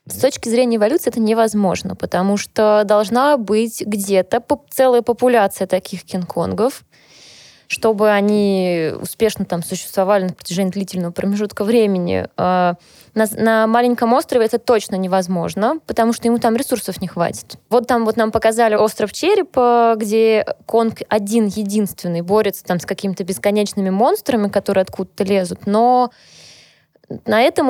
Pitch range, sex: 195-240 Hz, female